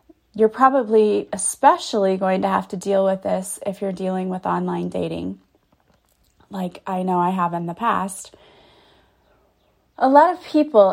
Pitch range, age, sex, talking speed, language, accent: 185-230 Hz, 30-49, female, 155 wpm, English, American